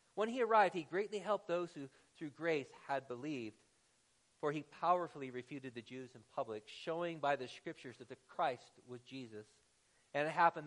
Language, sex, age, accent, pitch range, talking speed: English, male, 40-59, American, 130-170 Hz, 180 wpm